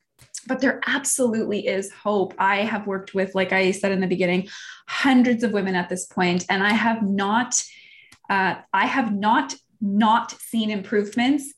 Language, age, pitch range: English, 20-39, 190-250 Hz